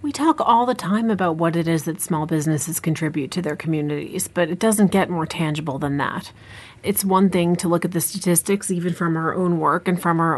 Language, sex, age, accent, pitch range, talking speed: English, female, 30-49, American, 165-205 Hz, 230 wpm